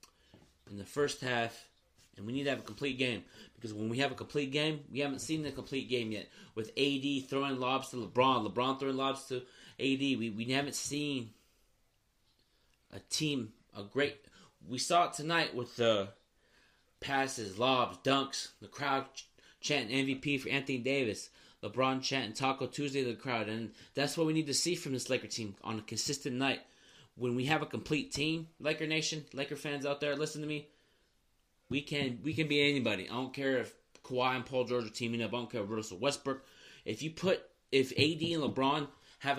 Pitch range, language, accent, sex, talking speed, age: 120-145 Hz, English, American, male, 200 wpm, 30-49